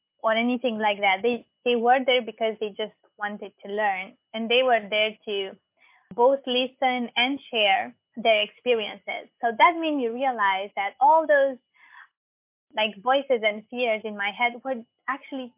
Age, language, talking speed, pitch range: 20-39, English, 160 wpm, 215-255 Hz